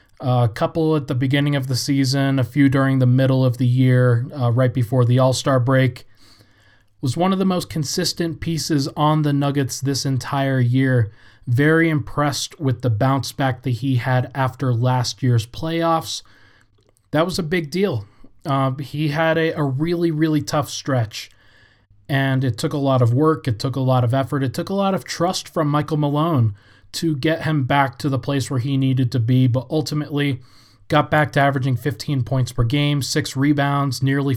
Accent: American